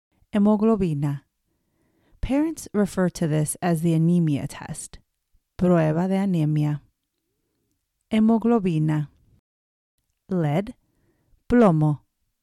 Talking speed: 70 wpm